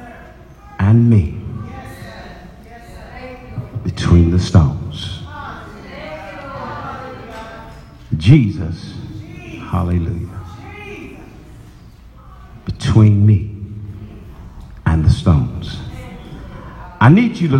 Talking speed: 55 wpm